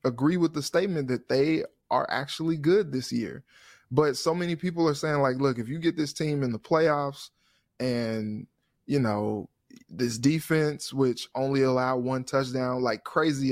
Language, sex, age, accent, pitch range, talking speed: English, male, 20-39, American, 120-145 Hz, 175 wpm